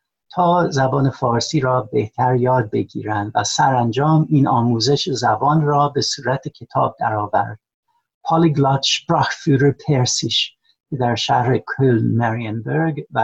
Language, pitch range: Persian, 115-150 Hz